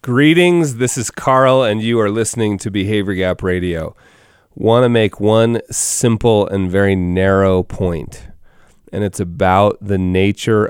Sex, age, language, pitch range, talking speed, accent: male, 30-49, English, 105-130 Hz, 145 wpm, American